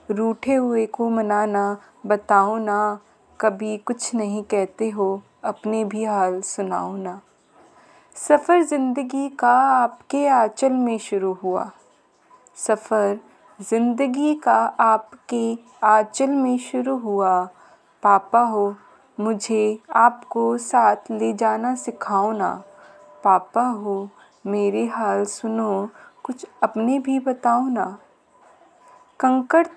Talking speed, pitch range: 105 wpm, 210-265 Hz